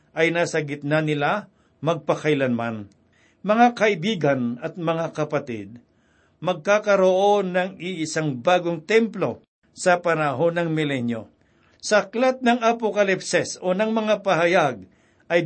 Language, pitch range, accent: Filipino, 150-195 Hz, native